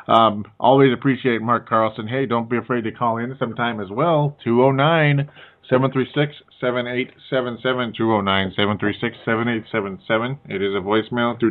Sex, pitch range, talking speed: male, 110-135 Hz, 115 wpm